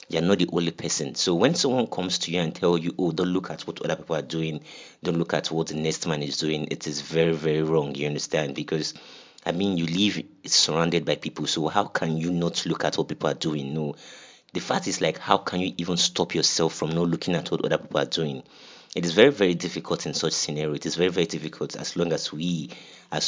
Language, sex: English, male